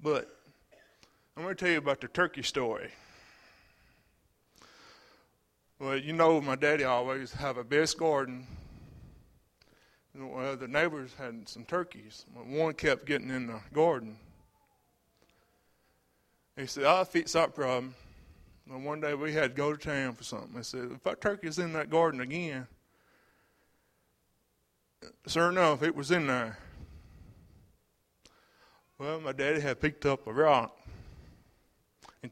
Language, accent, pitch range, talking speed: English, American, 125-160 Hz, 145 wpm